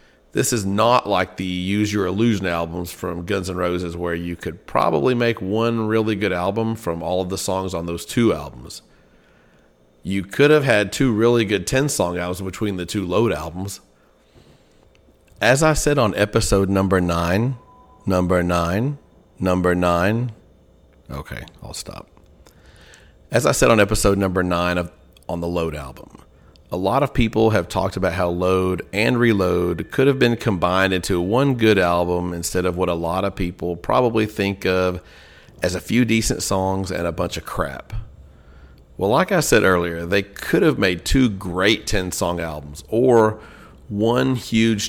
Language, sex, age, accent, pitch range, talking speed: English, male, 40-59, American, 85-110 Hz, 170 wpm